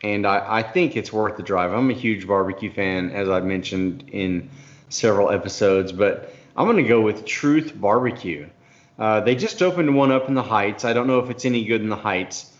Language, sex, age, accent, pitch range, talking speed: English, male, 30-49, American, 105-130 Hz, 215 wpm